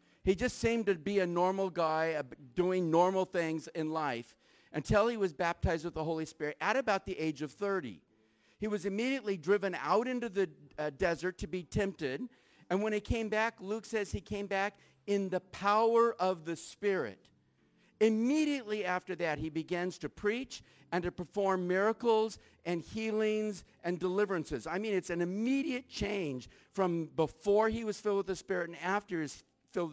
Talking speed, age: 180 wpm, 50-69